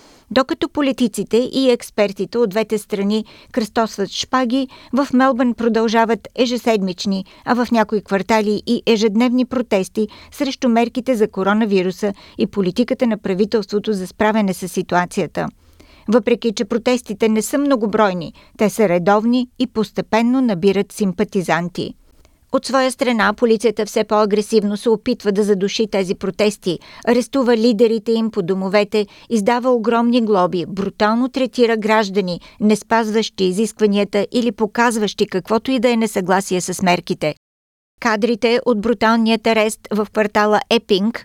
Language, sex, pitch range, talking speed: Bulgarian, female, 200-235 Hz, 125 wpm